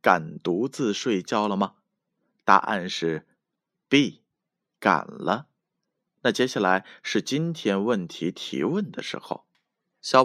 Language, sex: Chinese, male